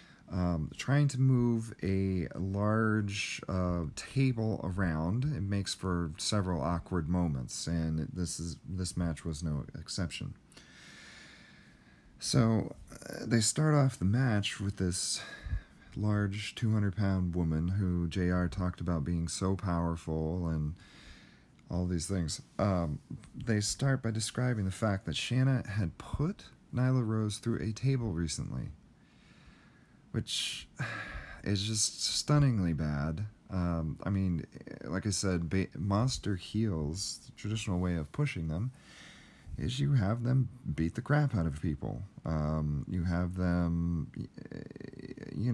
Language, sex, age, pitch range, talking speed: English, male, 40-59, 85-110 Hz, 130 wpm